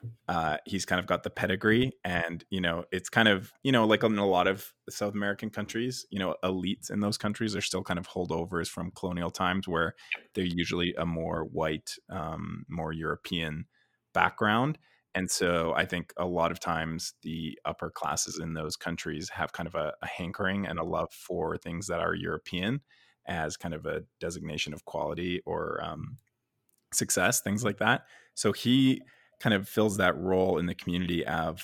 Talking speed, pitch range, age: 190 wpm, 85-100 Hz, 20-39